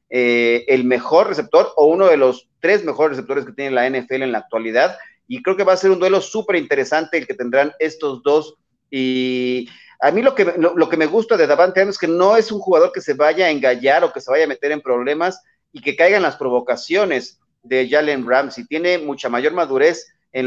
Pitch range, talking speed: 135-200 Hz, 225 wpm